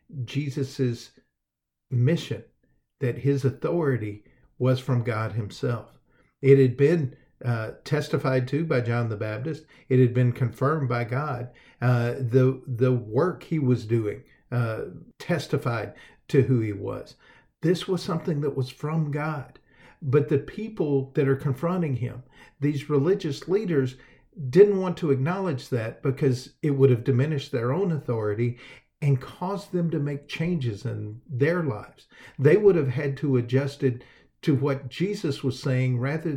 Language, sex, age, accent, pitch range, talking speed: English, male, 50-69, American, 125-160 Hz, 150 wpm